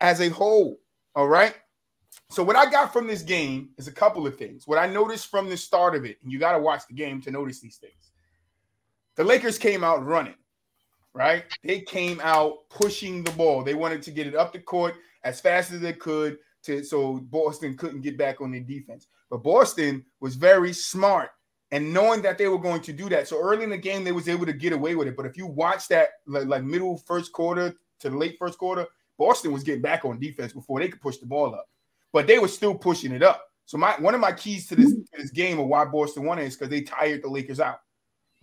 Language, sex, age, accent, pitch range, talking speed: English, male, 20-39, American, 140-180 Hz, 240 wpm